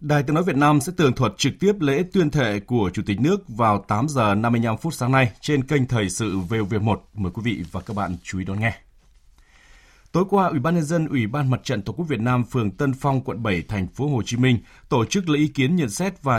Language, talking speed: Vietnamese, 260 wpm